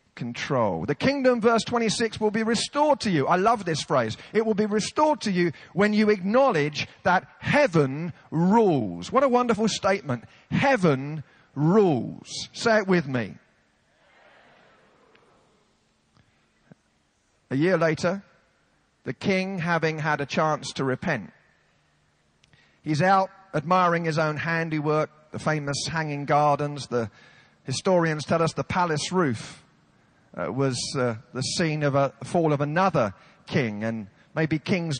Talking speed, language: 135 wpm, English